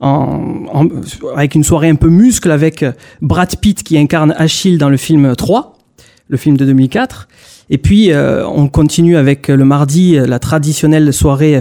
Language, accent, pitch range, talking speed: French, French, 145-180 Hz, 170 wpm